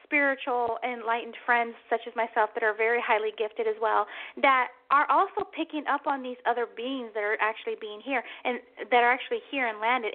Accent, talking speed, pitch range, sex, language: American, 200 wpm, 225-305 Hz, female, English